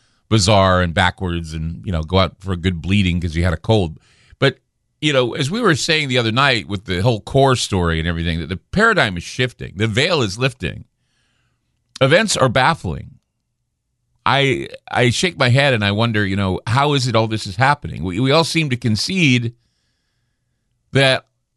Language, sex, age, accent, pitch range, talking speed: English, male, 40-59, American, 105-135 Hz, 195 wpm